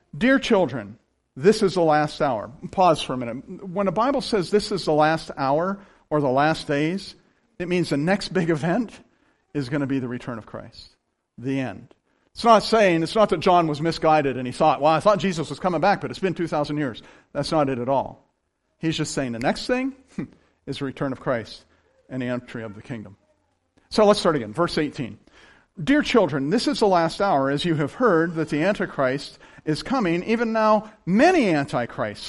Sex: male